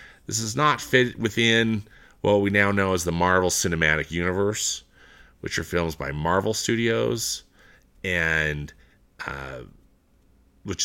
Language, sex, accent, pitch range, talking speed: English, male, American, 80-110 Hz, 125 wpm